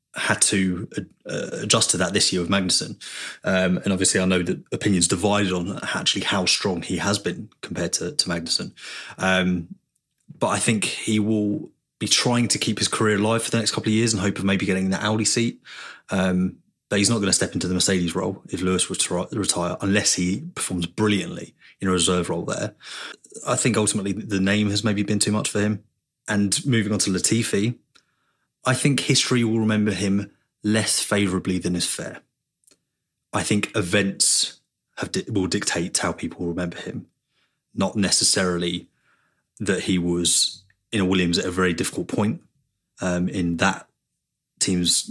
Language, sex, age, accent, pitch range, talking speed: English, male, 20-39, British, 90-105 Hz, 180 wpm